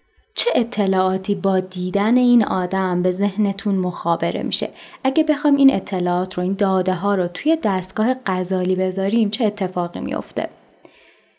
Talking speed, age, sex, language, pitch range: 135 wpm, 10-29, female, Persian, 185-255 Hz